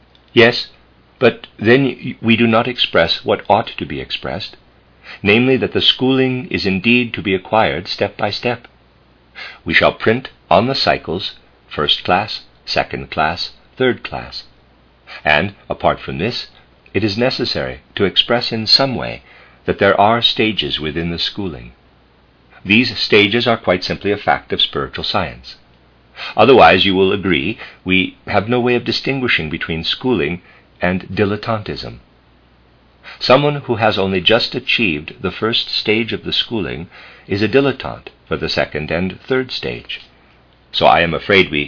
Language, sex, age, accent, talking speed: English, male, 50-69, American, 150 wpm